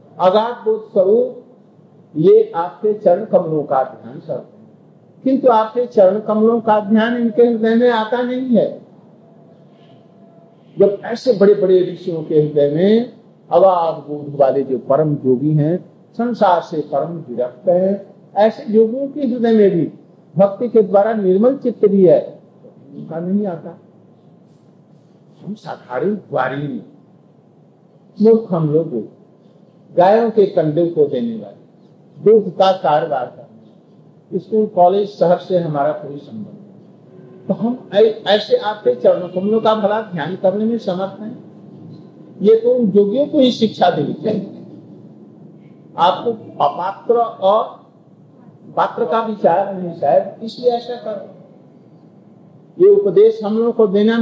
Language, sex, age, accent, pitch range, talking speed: Hindi, male, 50-69, native, 175-225 Hz, 120 wpm